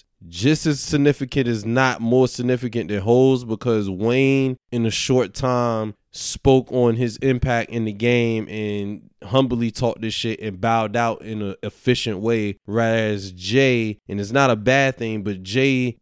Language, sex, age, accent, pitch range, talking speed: English, male, 20-39, American, 105-120 Hz, 165 wpm